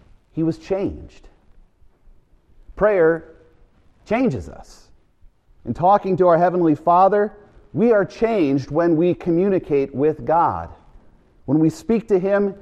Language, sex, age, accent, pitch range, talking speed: English, male, 40-59, American, 125-190 Hz, 120 wpm